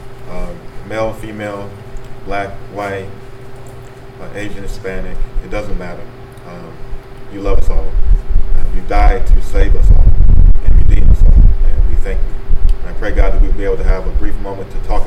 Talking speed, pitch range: 185 wpm, 95-125 Hz